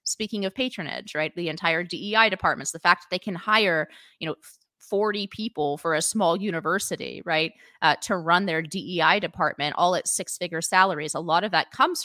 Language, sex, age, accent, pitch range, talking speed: English, female, 30-49, American, 160-200 Hz, 190 wpm